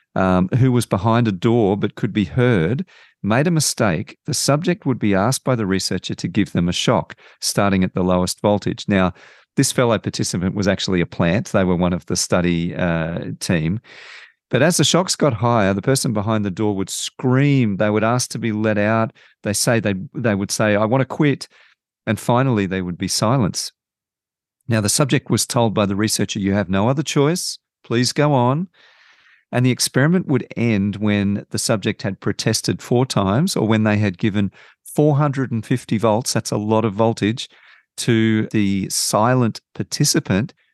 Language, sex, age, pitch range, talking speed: English, male, 50-69, 105-145 Hz, 185 wpm